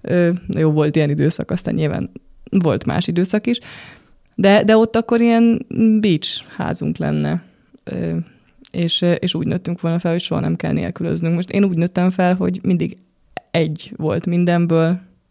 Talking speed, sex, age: 155 wpm, female, 20-39